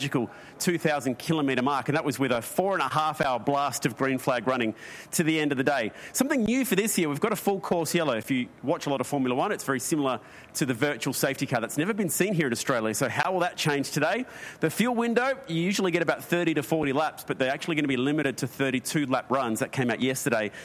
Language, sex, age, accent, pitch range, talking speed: English, male, 30-49, Australian, 130-165 Hz, 260 wpm